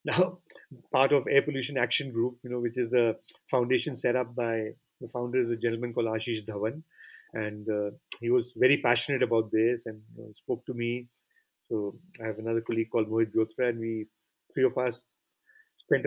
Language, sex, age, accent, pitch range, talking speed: English, male, 40-59, Indian, 115-130 Hz, 190 wpm